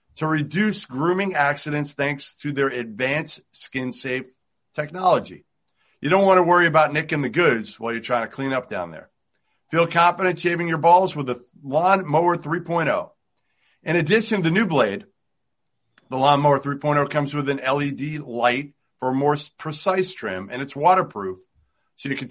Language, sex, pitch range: English, male, 130-165 Hz